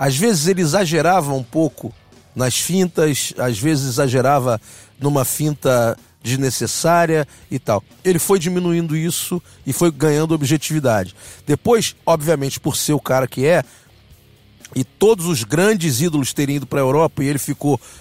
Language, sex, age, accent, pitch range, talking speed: Portuguese, male, 40-59, Brazilian, 130-180 Hz, 150 wpm